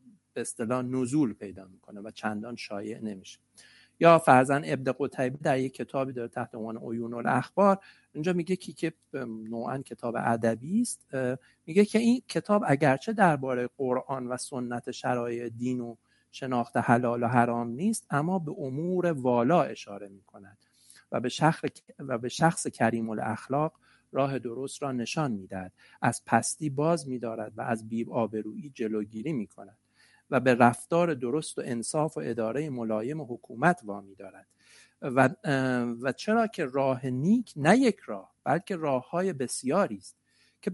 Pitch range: 115-155 Hz